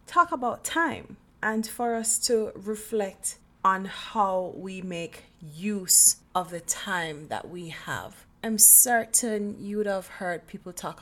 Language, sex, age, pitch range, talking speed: English, female, 30-49, 175-215 Hz, 140 wpm